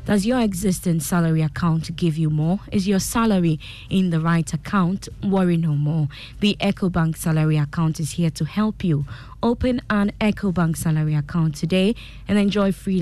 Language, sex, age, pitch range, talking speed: English, female, 20-39, 155-195 Hz, 175 wpm